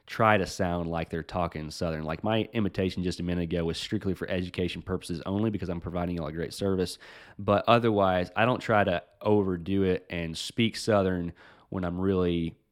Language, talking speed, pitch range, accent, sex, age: English, 200 wpm, 85-105 Hz, American, male, 20-39